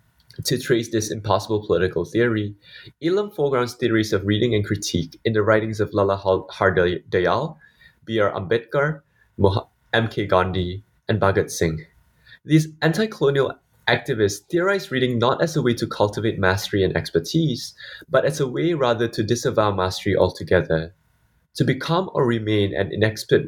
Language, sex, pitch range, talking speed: English, male, 95-135 Hz, 140 wpm